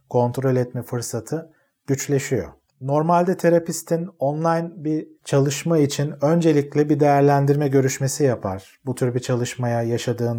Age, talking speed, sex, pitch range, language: 40-59, 115 wpm, male, 120-145 Hz, Turkish